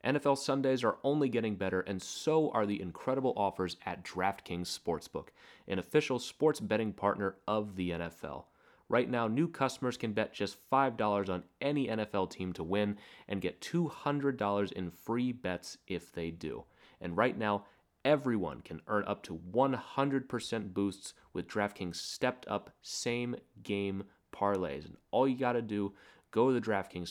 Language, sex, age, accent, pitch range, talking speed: English, male, 30-49, American, 95-120 Hz, 155 wpm